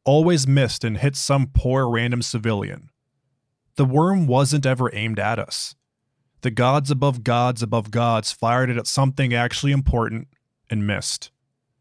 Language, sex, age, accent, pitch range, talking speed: English, male, 20-39, American, 115-140 Hz, 145 wpm